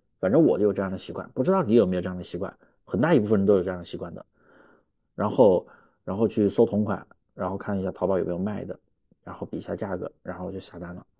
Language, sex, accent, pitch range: Chinese, male, native, 95-140 Hz